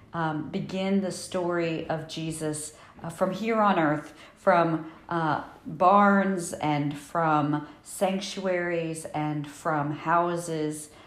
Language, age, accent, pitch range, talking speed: English, 50-69, American, 150-180 Hz, 110 wpm